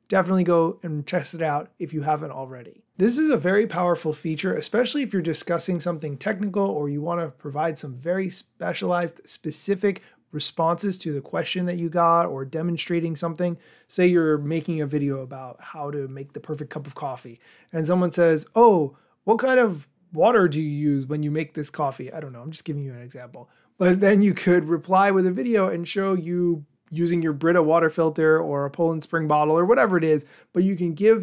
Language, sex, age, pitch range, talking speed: English, male, 30-49, 150-185 Hz, 210 wpm